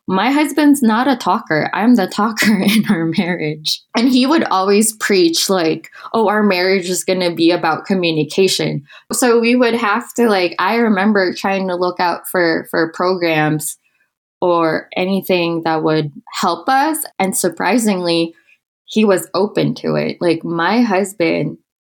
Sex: female